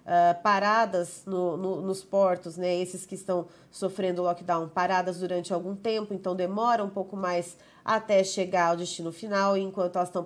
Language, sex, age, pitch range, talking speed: Portuguese, female, 30-49, 180-210 Hz, 175 wpm